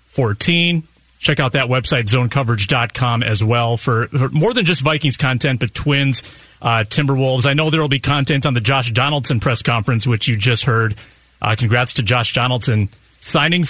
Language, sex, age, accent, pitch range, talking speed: English, male, 40-59, American, 120-150 Hz, 175 wpm